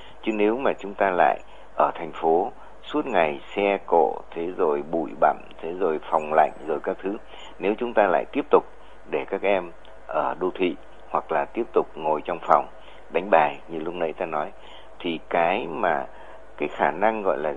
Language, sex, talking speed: Vietnamese, male, 200 wpm